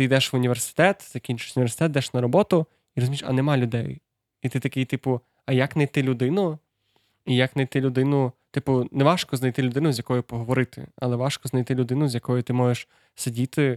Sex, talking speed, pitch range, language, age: male, 190 wpm, 125-135 Hz, Ukrainian, 20-39